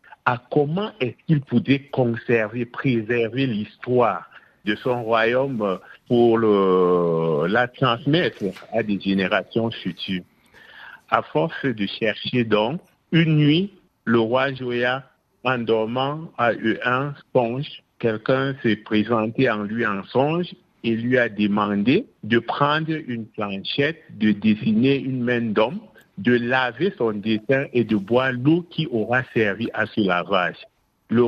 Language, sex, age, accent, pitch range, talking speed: French, male, 60-79, French, 105-130 Hz, 130 wpm